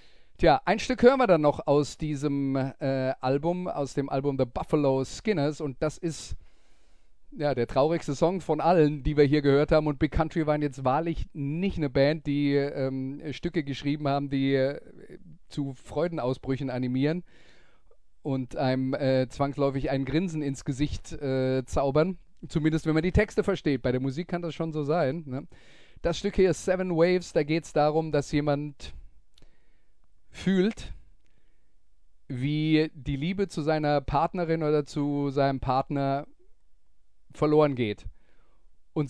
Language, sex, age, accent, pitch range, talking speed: German, male, 30-49, German, 130-155 Hz, 155 wpm